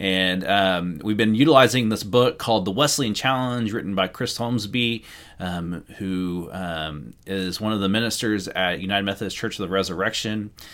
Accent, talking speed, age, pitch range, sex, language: American, 170 wpm, 30-49, 95-125 Hz, male, English